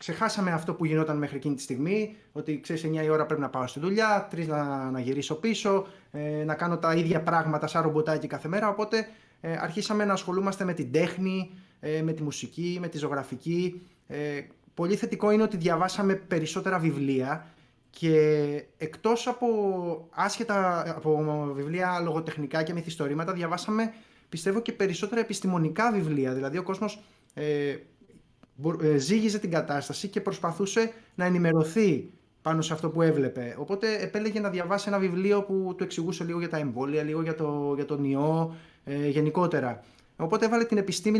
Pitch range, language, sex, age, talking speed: 150-195 Hz, Greek, male, 20-39, 165 wpm